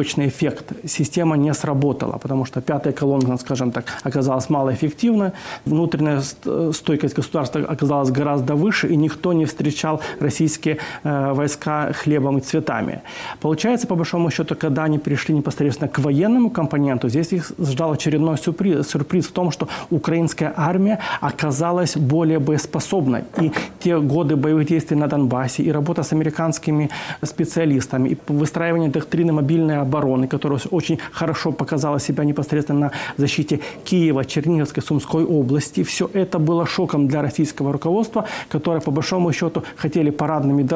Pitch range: 145-170 Hz